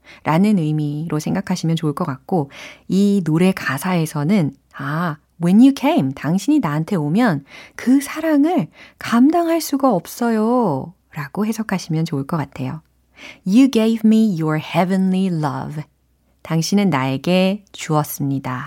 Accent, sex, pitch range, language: native, female, 155-235 Hz, Korean